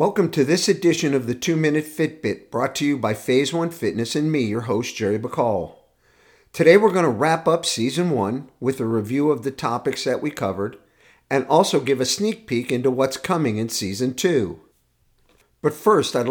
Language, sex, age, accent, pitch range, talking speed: English, male, 50-69, American, 115-150 Hz, 195 wpm